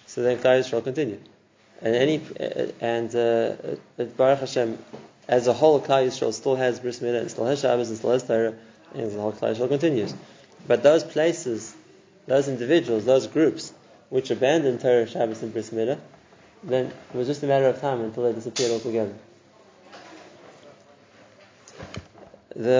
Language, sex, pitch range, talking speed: English, male, 115-135 Hz, 155 wpm